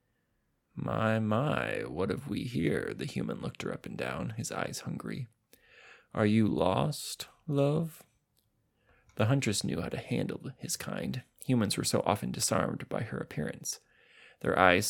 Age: 20-39